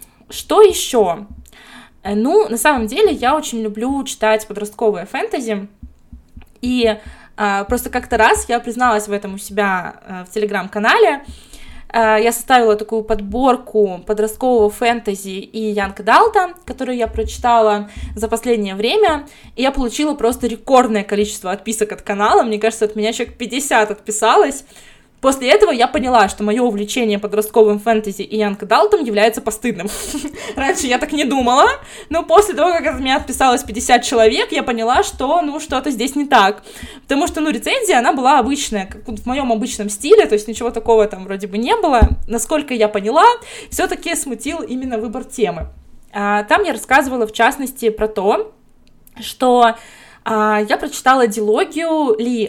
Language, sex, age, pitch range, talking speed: Russian, female, 20-39, 215-265 Hz, 150 wpm